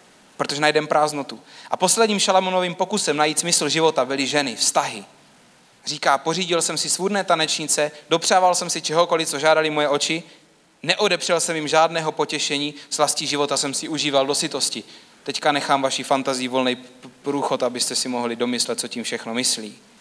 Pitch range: 140-185 Hz